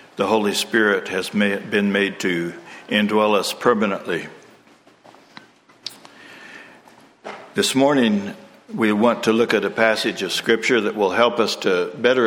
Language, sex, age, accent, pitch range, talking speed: English, male, 60-79, American, 95-115 Hz, 135 wpm